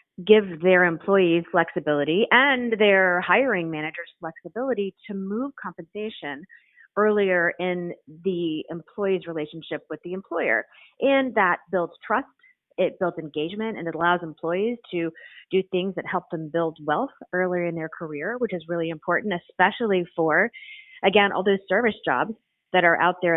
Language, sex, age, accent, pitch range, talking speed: English, female, 30-49, American, 170-220 Hz, 150 wpm